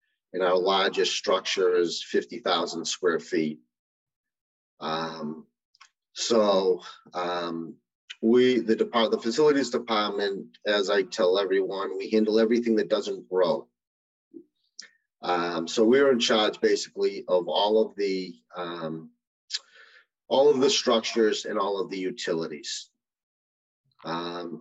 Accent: American